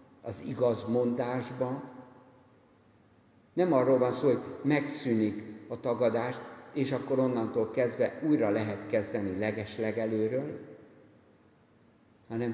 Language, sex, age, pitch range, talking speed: Hungarian, male, 60-79, 105-125 Hz, 95 wpm